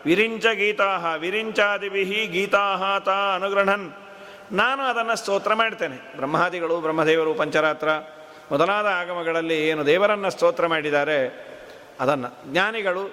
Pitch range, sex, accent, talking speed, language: 170-220 Hz, male, native, 95 wpm, Kannada